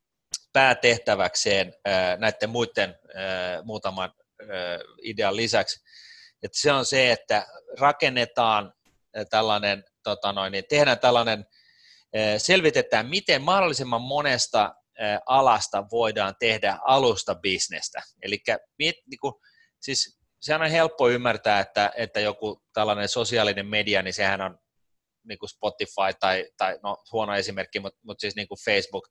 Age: 30-49